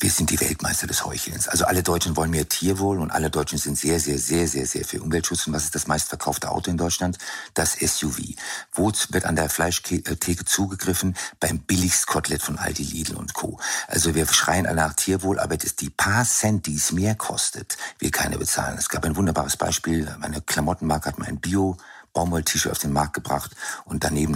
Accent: German